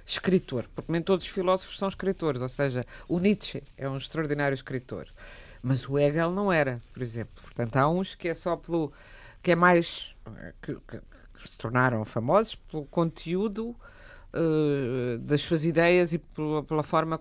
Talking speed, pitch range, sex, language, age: 165 wpm, 130-170 Hz, female, Portuguese, 50-69